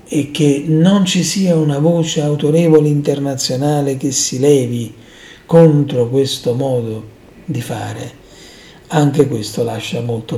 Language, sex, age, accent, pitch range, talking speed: Italian, male, 50-69, native, 125-150 Hz, 120 wpm